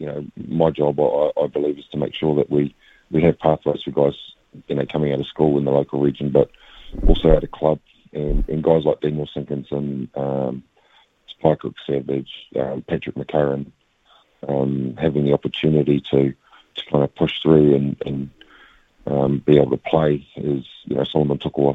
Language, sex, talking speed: English, male, 190 wpm